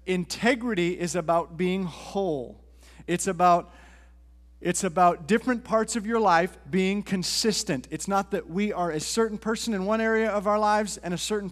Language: English